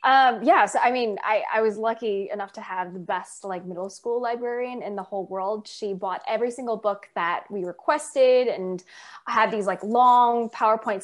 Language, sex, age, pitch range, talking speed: English, female, 20-39, 185-235 Hz, 195 wpm